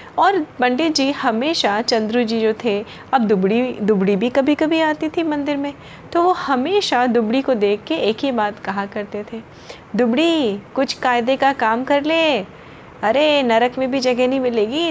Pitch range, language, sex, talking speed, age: 210-255 Hz, Hindi, female, 180 wpm, 30-49